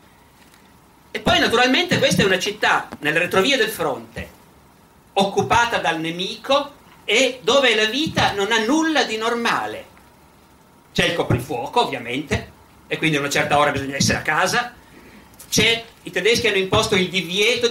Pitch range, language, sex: 165-225 Hz, Italian, male